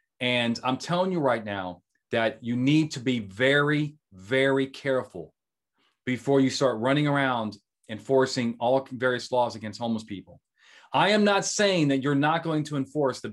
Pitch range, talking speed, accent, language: 115-150 Hz, 165 wpm, American, English